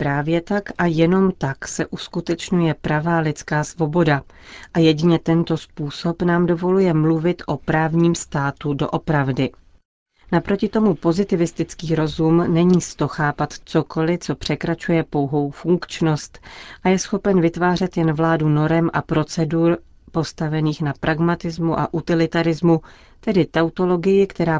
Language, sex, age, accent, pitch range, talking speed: Czech, female, 40-59, native, 150-170 Hz, 120 wpm